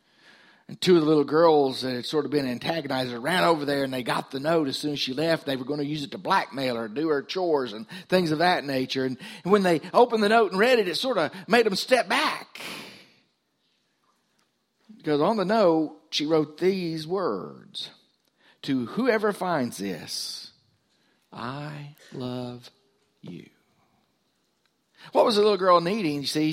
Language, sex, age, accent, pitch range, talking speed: English, male, 50-69, American, 140-190 Hz, 185 wpm